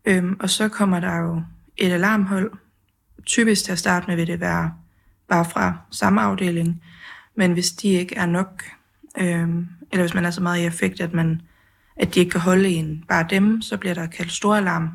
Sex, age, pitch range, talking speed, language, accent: female, 20-39, 170-195 Hz, 205 wpm, Danish, native